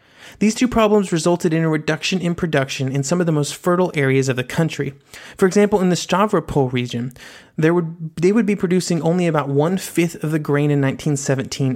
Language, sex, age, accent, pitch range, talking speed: English, male, 30-49, American, 140-180 Hz, 190 wpm